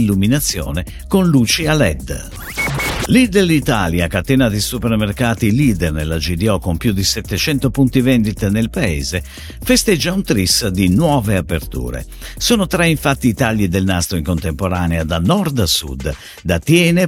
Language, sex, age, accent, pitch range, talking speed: Italian, male, 50-69, native, 90-145 Hz, 150 wpm